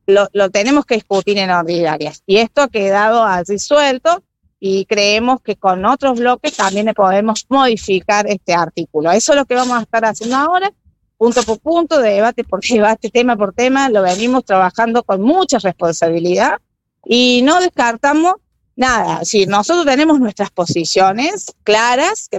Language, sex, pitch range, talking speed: Spanish, female, 200-275 Hz, 160 wpm